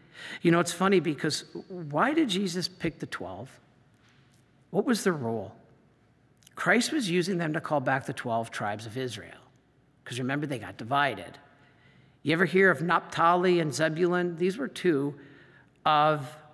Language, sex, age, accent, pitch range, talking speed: English, male, 50-69, American, 130-165 Hz, 155 wpm